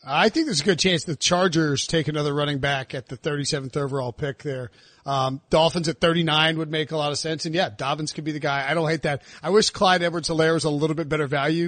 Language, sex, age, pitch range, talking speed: English, male, 40-59, 155-205 Hz, 250 wpm